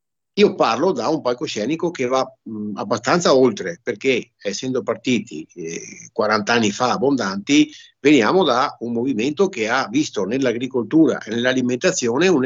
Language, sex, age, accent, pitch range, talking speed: Italian, male, 60-79, native, 110-145 Hz, 130 wpm